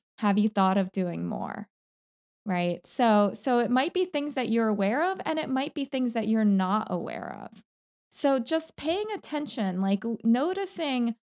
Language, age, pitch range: English, 20-39, 205-280 Hz